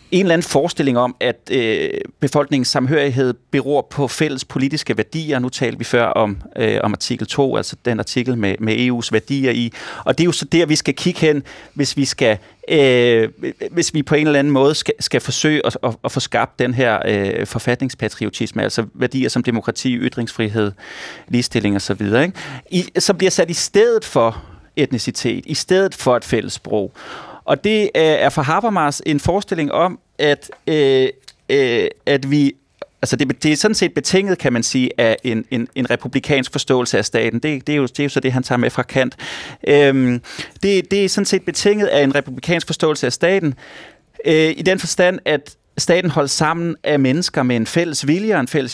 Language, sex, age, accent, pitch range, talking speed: Danish, male, 30-49, native, 125-165 Hz, 200 wpm